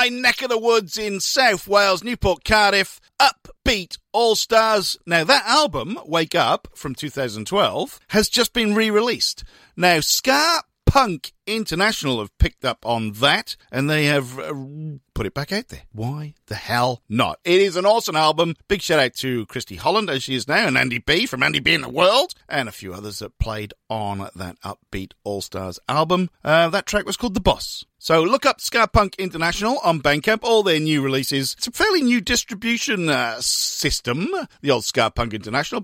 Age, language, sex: 50-69, English, male